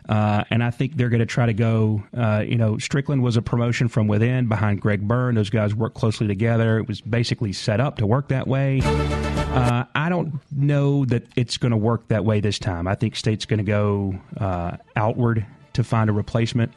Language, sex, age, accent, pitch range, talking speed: English, male, 40-59, American, 110-125 Hz, 220 wpm